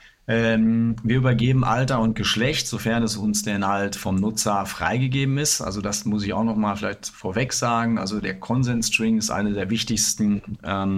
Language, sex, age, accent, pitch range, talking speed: German, male, 40-59, German, 100-115 Hz, 180 wpm